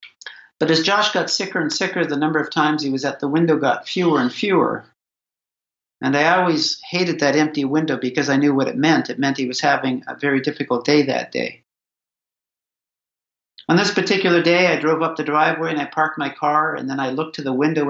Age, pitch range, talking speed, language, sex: 50-69, 140-170 Hz, 220 wpm, English, male